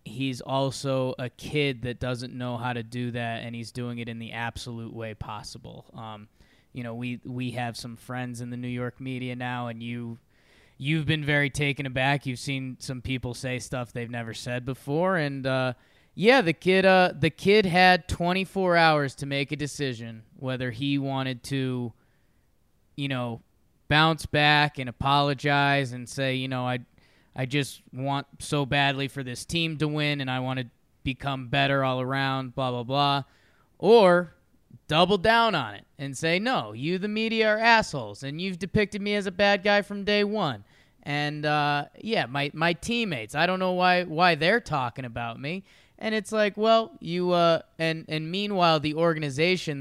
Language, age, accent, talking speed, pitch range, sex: English, 20-39, American, 185 wpm, 125-170 Hz, male